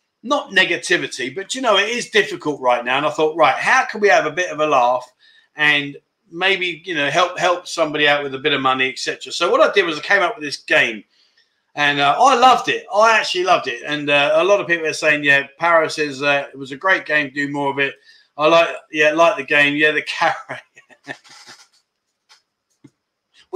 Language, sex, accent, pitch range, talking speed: English, male, British, 140-210 Hz, 225 wpm